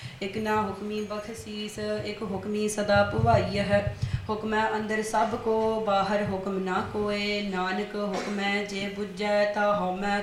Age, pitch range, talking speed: 20-39, 205-215 Hz, 160 wpm